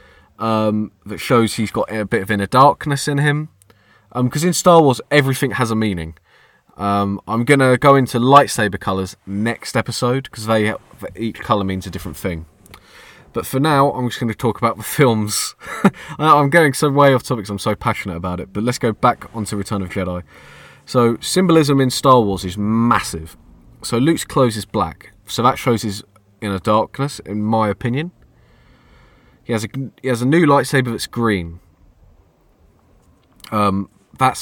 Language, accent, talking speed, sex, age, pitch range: English, British, 180 wpm, male, 20-39, 95-120 Hz